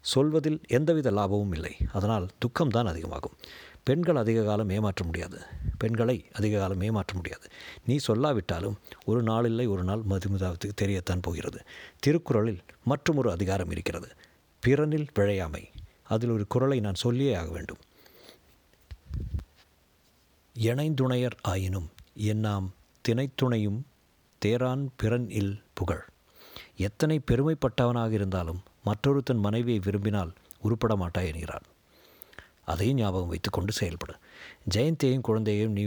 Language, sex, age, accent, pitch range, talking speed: Tamil, male, 50-69, native, 95-120 Hz, 105 wpm